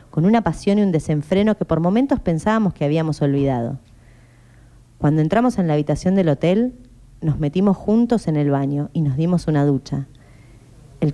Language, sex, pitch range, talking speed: Spanish, female, 135-170 Hz, 170 wpm